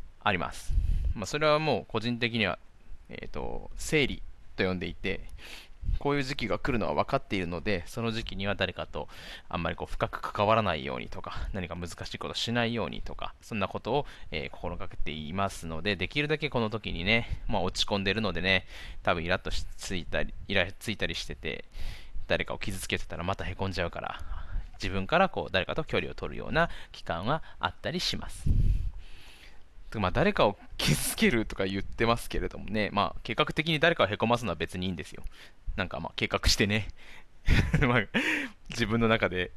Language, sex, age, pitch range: Japanese, male, 20-39, 85-115 Hz